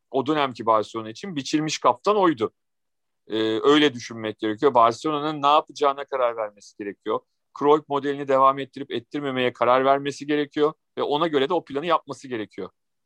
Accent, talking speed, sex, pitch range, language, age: native, 150 wpm, male, 115-150 Hz, Turkish, 50-69